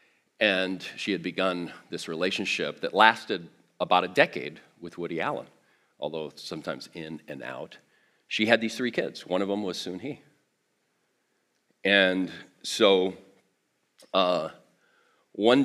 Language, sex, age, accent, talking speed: English, male, 40-59, American, 125 wpm